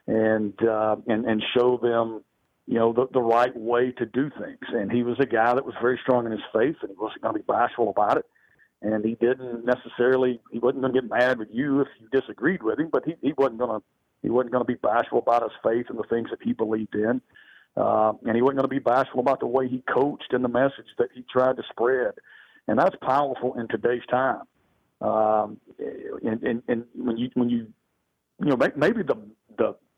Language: English